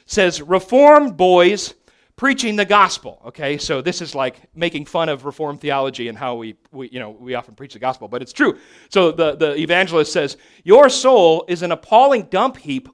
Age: 40-59